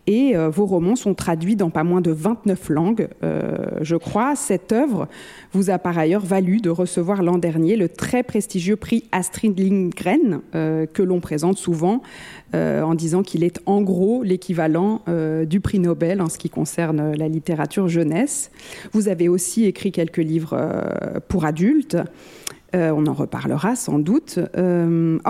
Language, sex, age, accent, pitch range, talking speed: French, female, 40-59, French, 165-205 Hz, 170 wpm